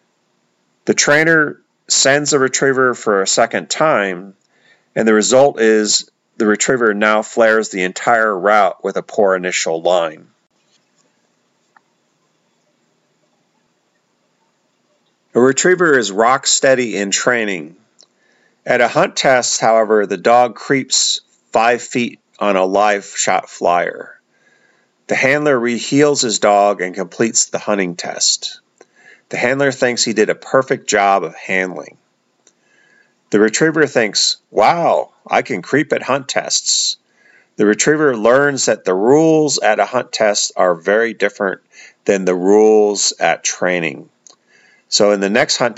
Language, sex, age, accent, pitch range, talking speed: English, male, 40-59, American, 95-125 Hz, 130 wpm